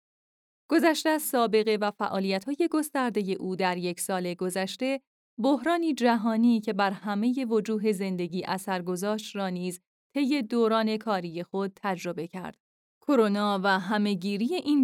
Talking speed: 120 wpm